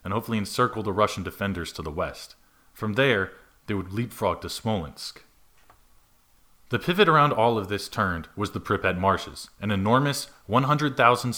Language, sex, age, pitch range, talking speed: English, male, 30-49, 95-120 Hz, 160 wpm